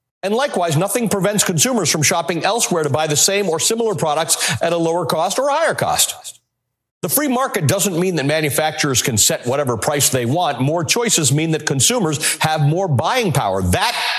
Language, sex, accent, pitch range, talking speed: English, male, American, 135-185 Hz, 190 wpm